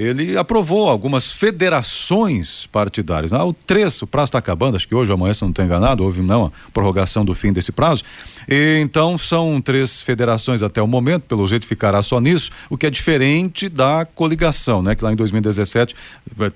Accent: Brazilian